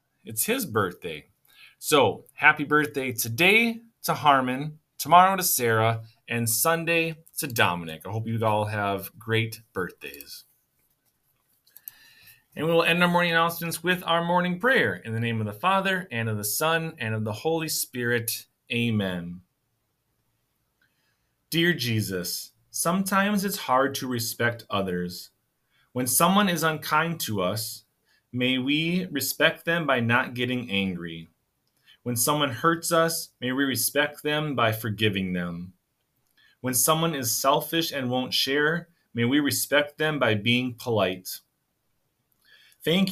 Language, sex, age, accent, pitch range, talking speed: English, male, 30-49, American, 110-155 Hz, 135 wpm